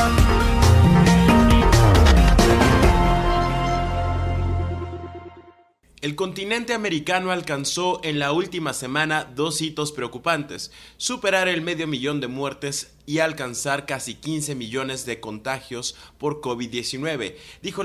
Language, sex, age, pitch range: Spanish, male, 20-39, 115-150 Hz